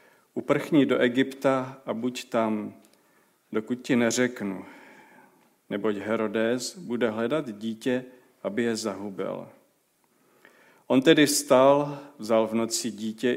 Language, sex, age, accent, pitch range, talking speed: Czech, male, 40-59, native, 110-125 Hz, 110 wpm